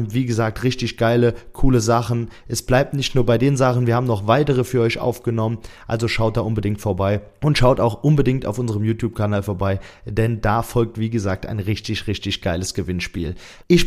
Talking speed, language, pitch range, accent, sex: 190 wpm, German, 105-125 Hz, German, male